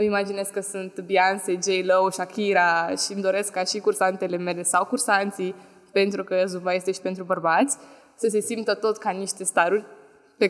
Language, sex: Romanian, female